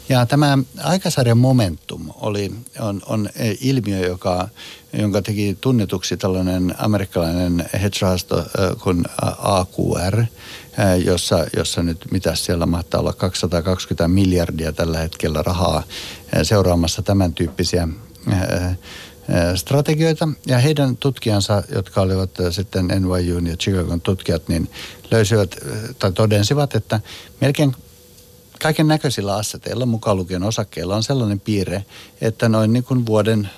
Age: 60-79